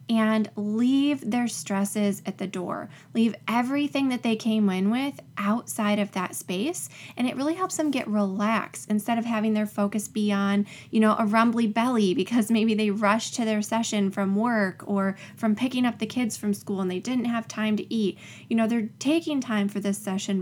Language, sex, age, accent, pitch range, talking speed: English, female, 20-39, American, 200-245 Hz, 205 wpm